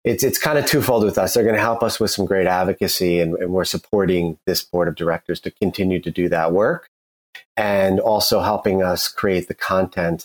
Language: English